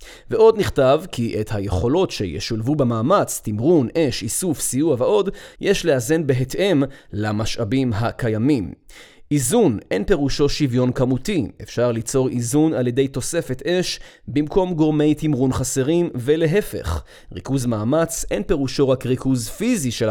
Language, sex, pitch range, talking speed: Hebrew, male, 115-150 Hz, 125 wpm